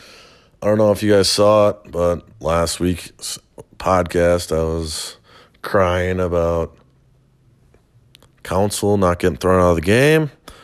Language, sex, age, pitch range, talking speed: English, male, 30-49, 90-115 Hz, 135 wpm